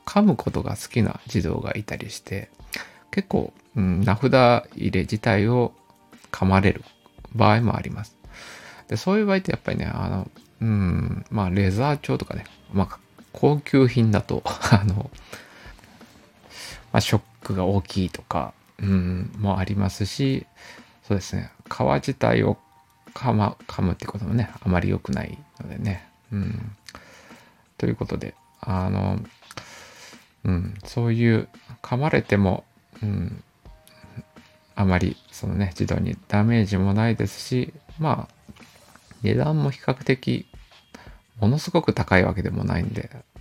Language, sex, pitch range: Japanese, male, 95-115 Hz